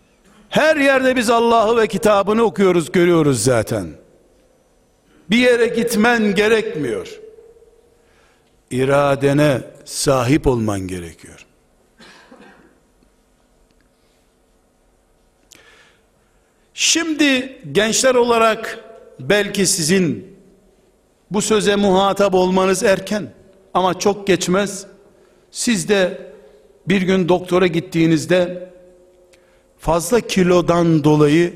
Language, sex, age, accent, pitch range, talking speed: Turkish, male, 60-79, native, 155-225 Hz, 75 wpm